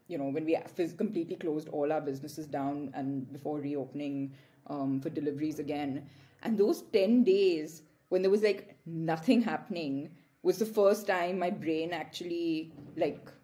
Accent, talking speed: Indian, 155 wpm